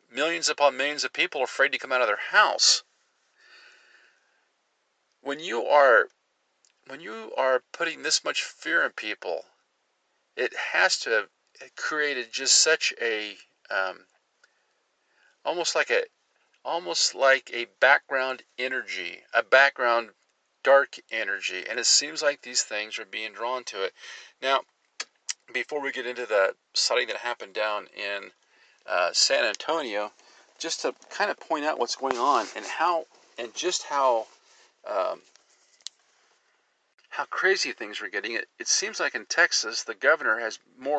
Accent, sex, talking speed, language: American, male, 150 wpm, English